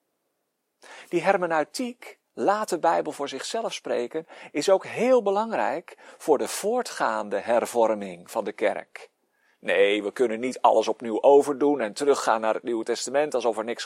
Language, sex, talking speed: Dutch, male, 150 wpm